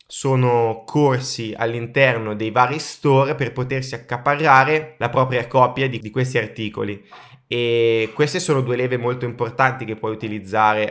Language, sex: Italian, male